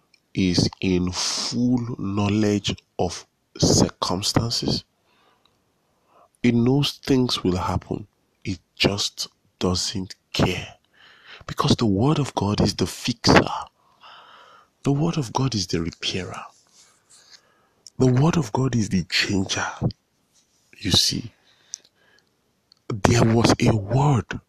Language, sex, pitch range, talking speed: English, male, 90-125 Hz, 105 wpm